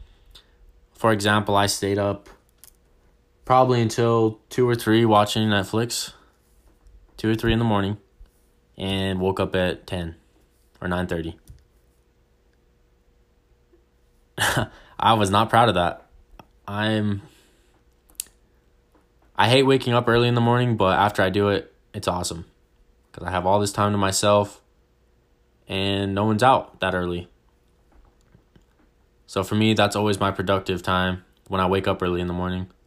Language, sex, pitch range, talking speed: English, male, 85-105 Hz, 140 wpm